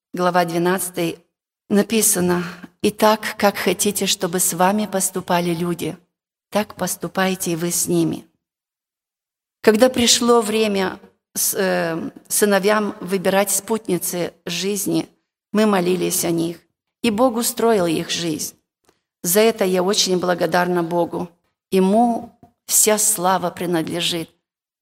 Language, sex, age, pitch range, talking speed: Russian, female, 40-59, 180-210 Hz, 110 wpm